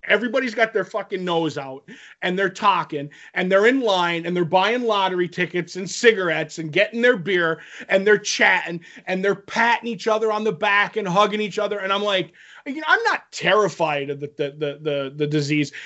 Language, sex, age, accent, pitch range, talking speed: English, male, 30-49, American, 170-230 Hz, 205 wpm